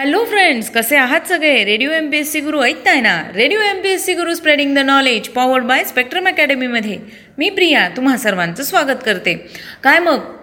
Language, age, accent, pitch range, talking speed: Marathi, 30-49, native, 230-305 Hz, 175 wpm